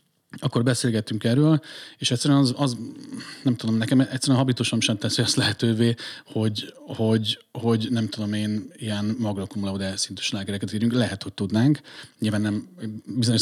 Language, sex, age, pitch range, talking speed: Hungarian, male, 30-49, 105-125 Hz, 160 wpm